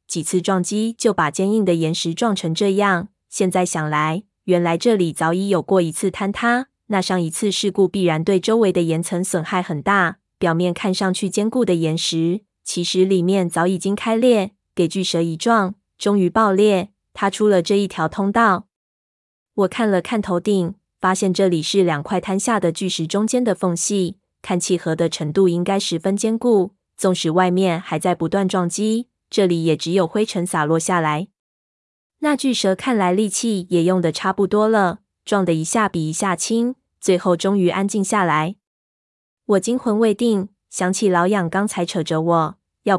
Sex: female